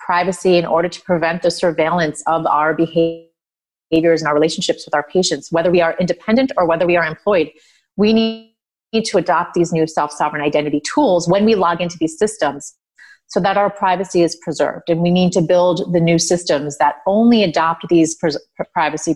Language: English